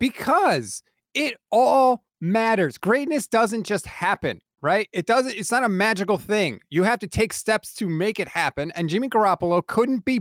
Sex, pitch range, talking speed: male, 180-235 Hz, 175 wpm